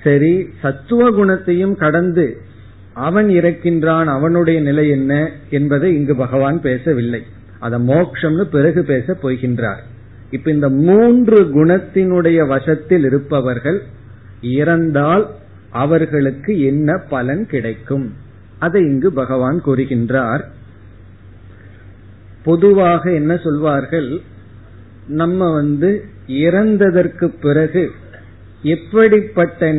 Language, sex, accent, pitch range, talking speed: Tamil, male, native, 130-175 Hz, 65 wpm